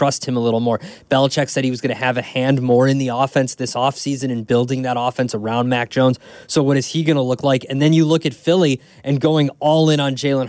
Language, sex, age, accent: English, male, 20-39, American